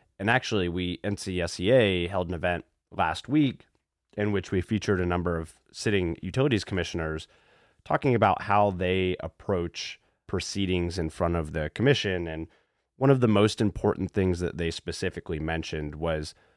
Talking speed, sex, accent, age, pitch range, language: 150 wpm, male, American, 30-49, 85-100 Hz, English